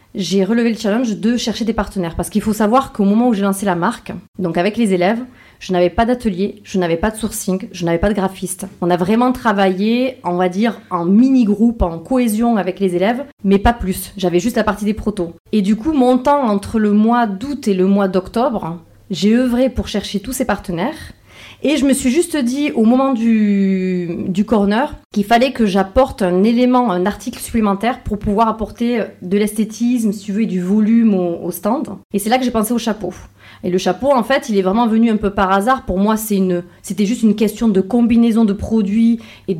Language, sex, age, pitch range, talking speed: French, female, 30-49, 190-235 Hz, 225 wpm